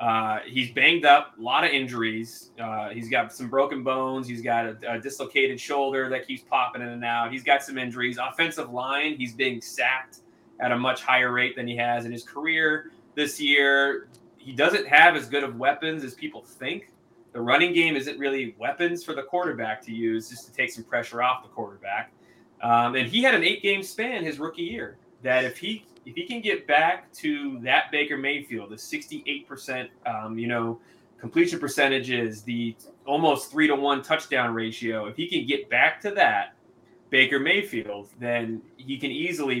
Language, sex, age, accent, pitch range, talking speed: English, male, 20-39, American, 115-145 Hz, 190 wpm